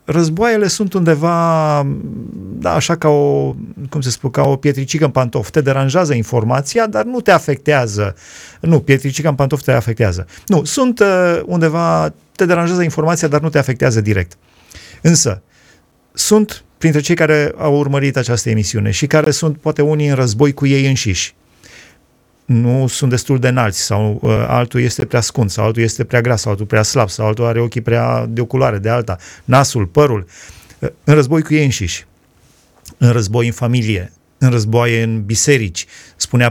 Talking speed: 170 wpm